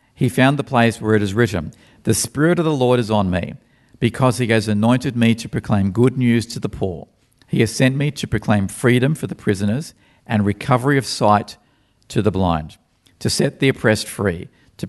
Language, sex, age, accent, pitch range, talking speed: English, male, 50-69, Australian, 100-125 Hz, 205 wpm